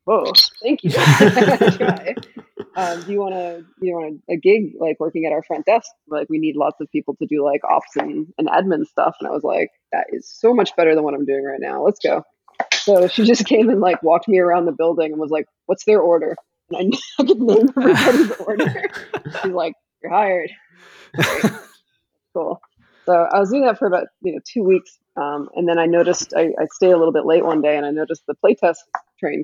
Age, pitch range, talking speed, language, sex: 20-39, 150-200 Hz, 220 wpm, English, female